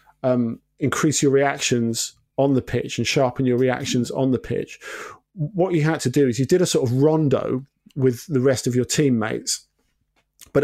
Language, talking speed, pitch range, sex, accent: English, 185 wpm, 125-145 Hz, male, British